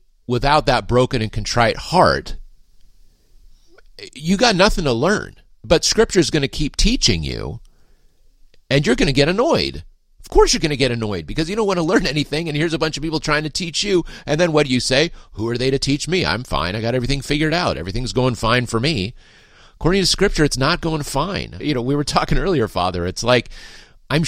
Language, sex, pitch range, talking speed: English, male, 110-155 Hz, 220 wpm